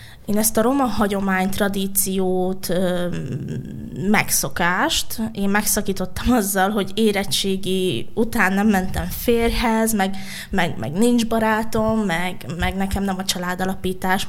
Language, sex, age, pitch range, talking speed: Hungarian, female, 20-39, 190-235 Hz, 115 wpm